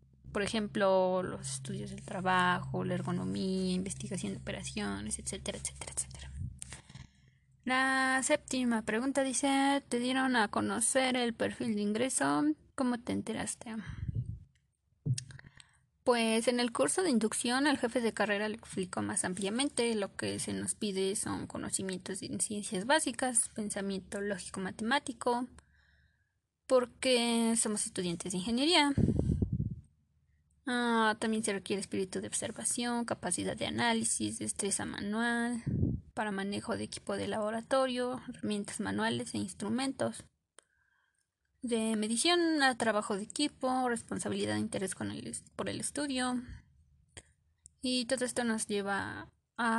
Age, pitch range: 20-39, 180-250 Hz